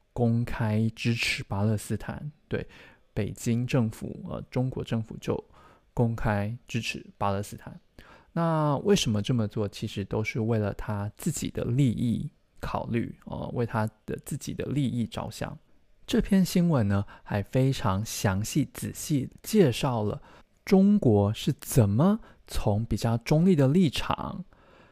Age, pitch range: 20-39, 110-140 Hz